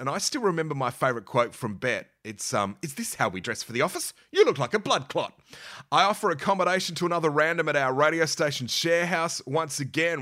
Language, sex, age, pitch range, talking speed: English, male, 30-49, 125-165 Hz, 230 wpm